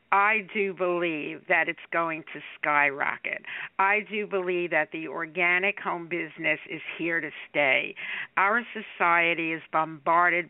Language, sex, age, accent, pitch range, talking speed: English, female, 60-79, American, 160-190 Hz, 135 wpm